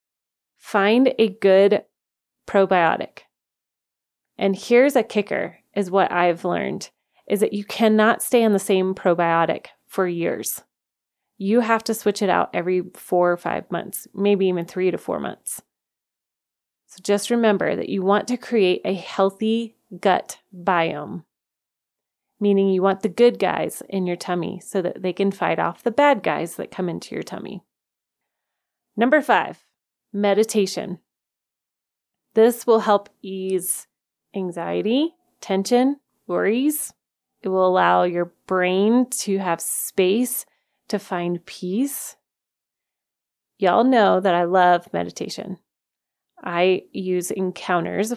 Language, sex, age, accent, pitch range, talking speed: English, female, 30-49, American, 180-220 Hz, 130 wpm